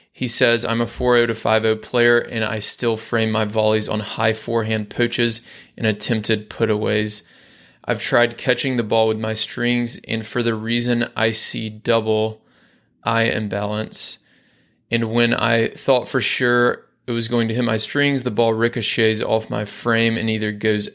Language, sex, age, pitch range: English, male, 20-39, 110-120 Hz